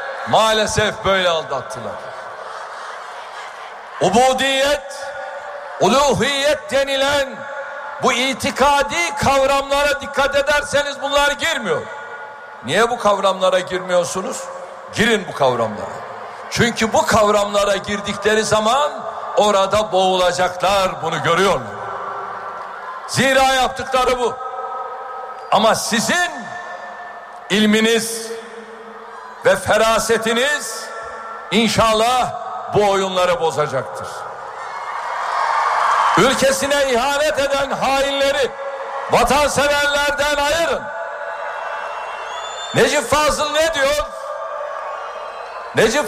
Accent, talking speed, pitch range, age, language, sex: native, 70 wpm, 225-295 Hz, 60-79, Turkish, male